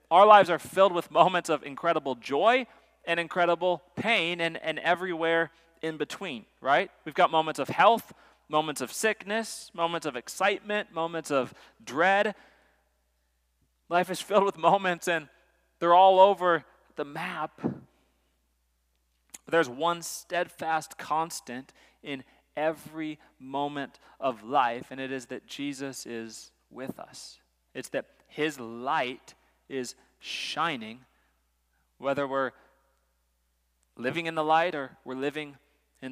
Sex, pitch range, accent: male, 130-170 Hz, American